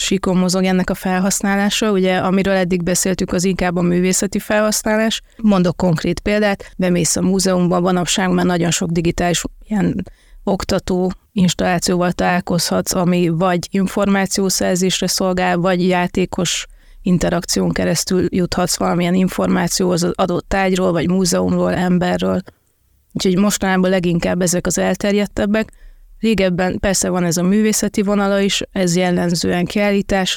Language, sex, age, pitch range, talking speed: Hungarian, female, 30-49, 180-195 Hz, 125 wpm